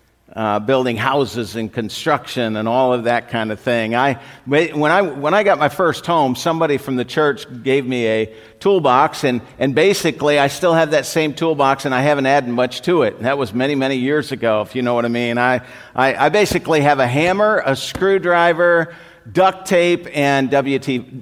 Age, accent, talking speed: 50-69, American, 200 wpm